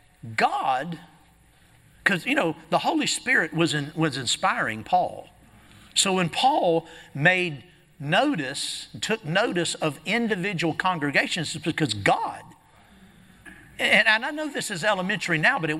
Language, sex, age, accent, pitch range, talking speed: English, male, 50-69, American, 170-255 Hz, 125 wpm